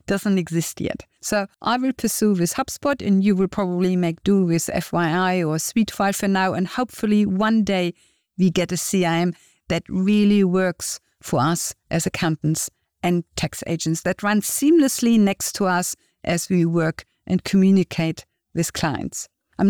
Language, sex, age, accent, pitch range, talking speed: English, female, 50-69, German, 175-215 Hz, 160 wpm